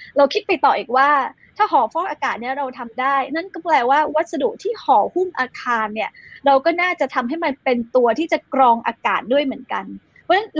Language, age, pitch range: Thai, 20-39, 250-310 Hz